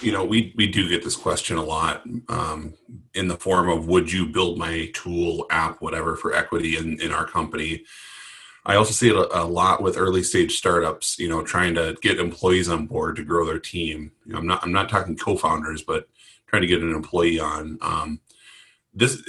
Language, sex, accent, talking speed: English, male, American, 210 wpm